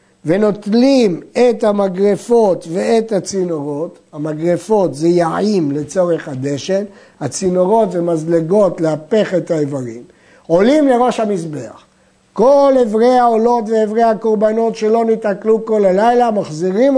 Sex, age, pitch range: male, 50-69, 175-235 Hz